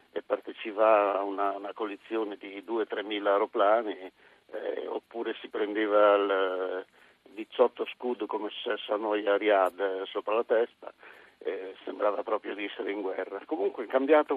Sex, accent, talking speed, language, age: male, native, 135 wpm, Italian, 50-69